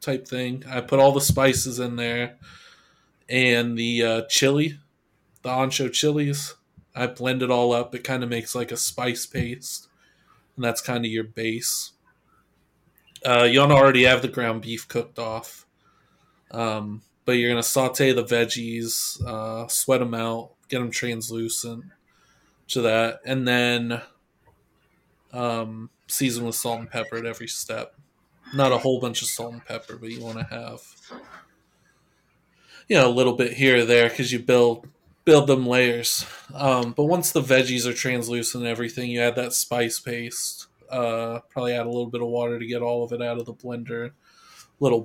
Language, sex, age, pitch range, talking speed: English, male, 20-39, 115-130 Hz, 175 wpm